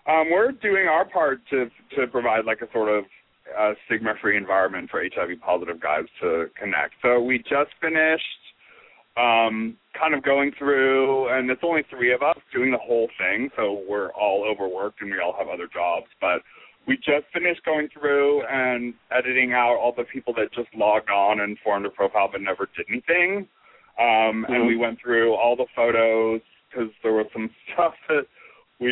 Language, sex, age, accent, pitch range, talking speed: English, male, 40-59, American, 110-145 Hz, 185 wpm